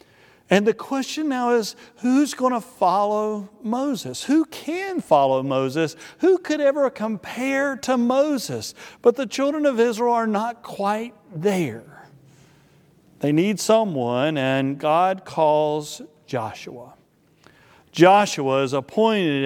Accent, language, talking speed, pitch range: American, English, 120 wpm, 150-230 Hz